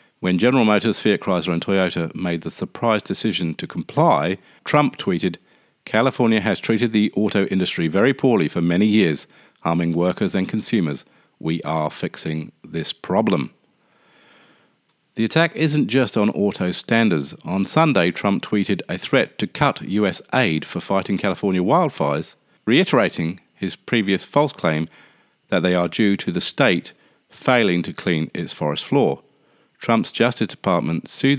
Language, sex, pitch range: English, male, 85-110 Hz